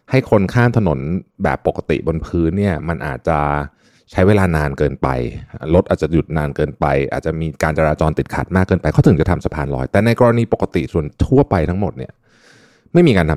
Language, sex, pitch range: Thai, male, 80-115 Hz